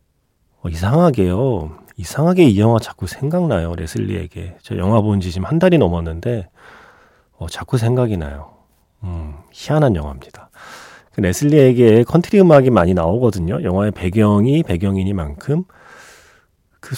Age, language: 30-49, Korean